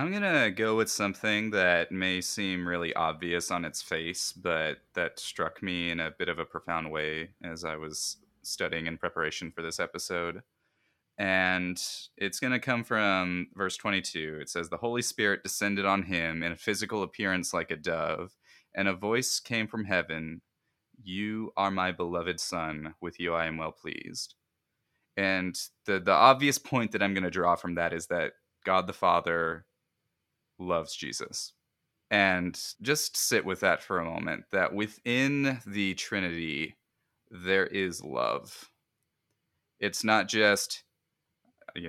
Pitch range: 85-105 Hz